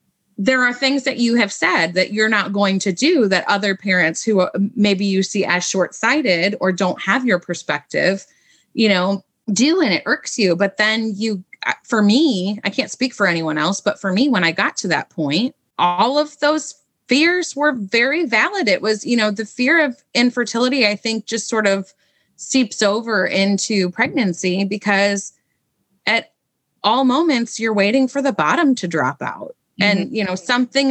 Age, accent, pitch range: 30-49, American, 185-245 Hz